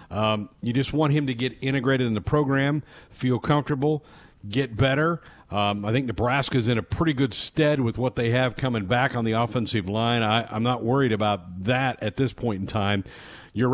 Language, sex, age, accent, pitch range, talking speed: English, male, 50-69, American, 105-140 Hz, 200 wpm